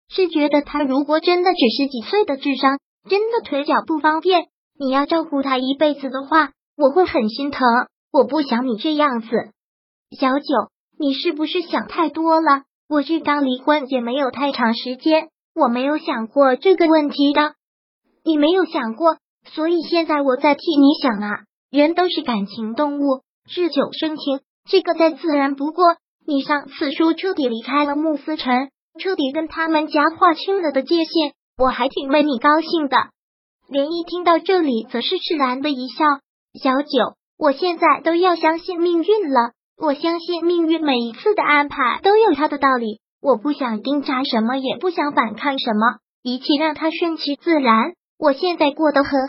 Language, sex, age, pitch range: Chinese, male, 20-39, 270-325 Hz